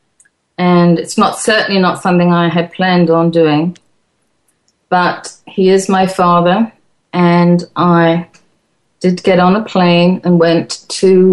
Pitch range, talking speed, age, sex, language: 165-195 Hz, 140 wpm, 40-59, female, English